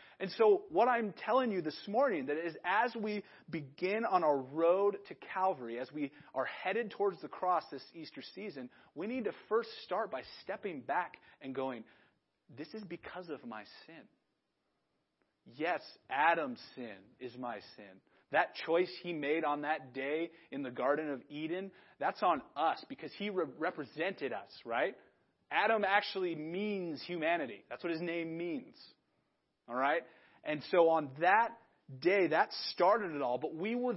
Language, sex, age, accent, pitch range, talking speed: English, male, 30-49, American, 155-240 Hz, 165 wpm